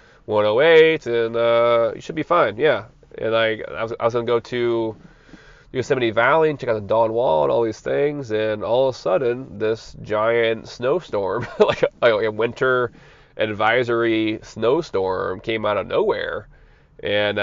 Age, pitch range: 20-39, 110-150 Hz